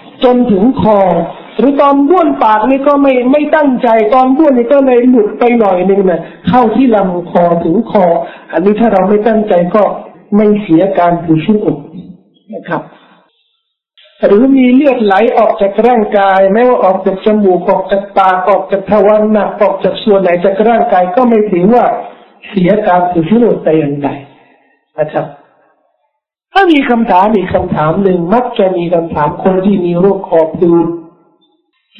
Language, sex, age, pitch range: Thai, male, 60-79, 175-220 Hz